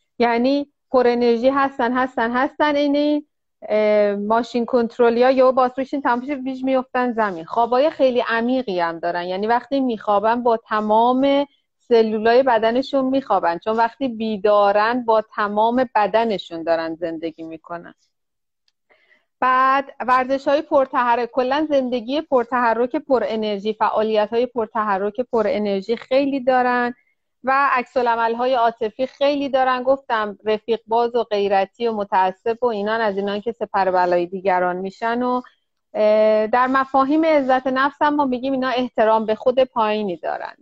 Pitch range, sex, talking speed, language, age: 205-260 Hz, female, 130 wpm, Persian, 30-49